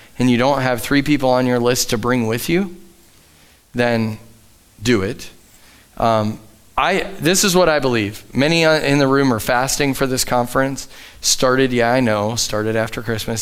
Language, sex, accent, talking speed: English, male, American, 175 wpm